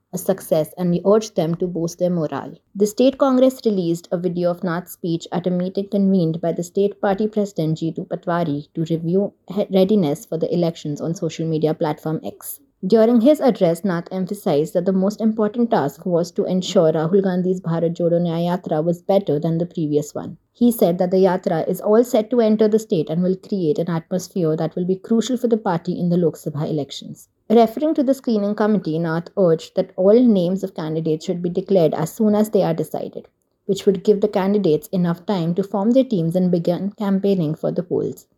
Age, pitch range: 20-39, 170-205 Hz